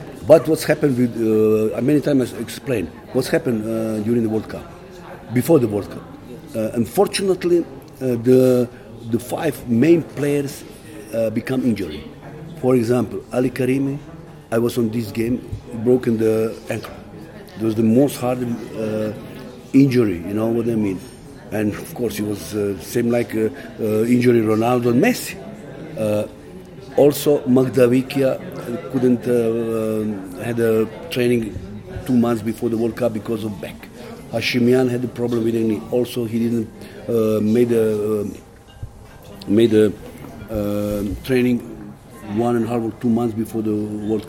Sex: male